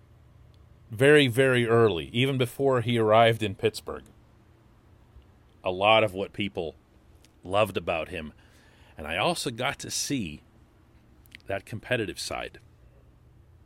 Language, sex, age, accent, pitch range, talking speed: English, male, 40-59, American, 105-170 Hz, 115 wpm